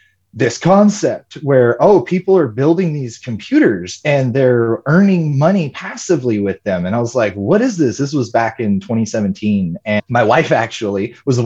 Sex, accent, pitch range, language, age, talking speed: male, American, 100-135 Hz, English, 30-49, 180 wpm